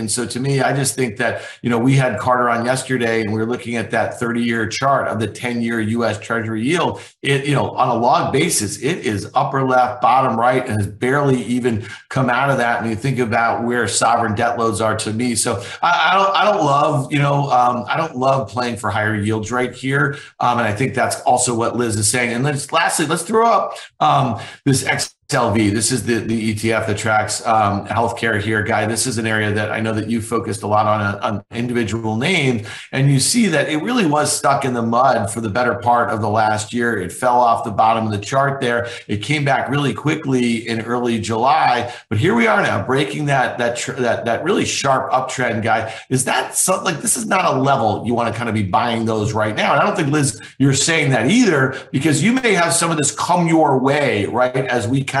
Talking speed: 240 wpm